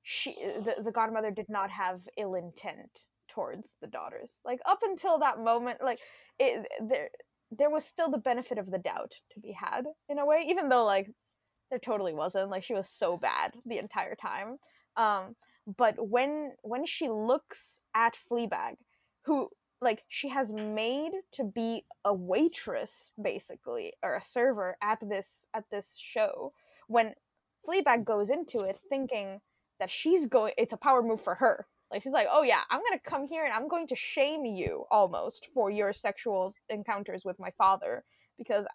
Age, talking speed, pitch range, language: 10-29, 175 wpm, 205-285 Hz, English